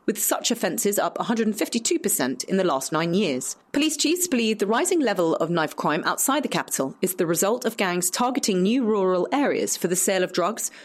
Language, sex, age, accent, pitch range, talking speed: English, female, 30-49, British, 180-250 Hz, 200 wpm